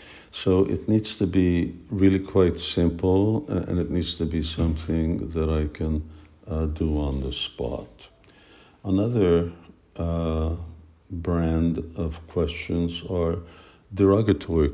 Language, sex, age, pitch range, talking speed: English, male, 60-79, 75-90 Hz, 120 wpm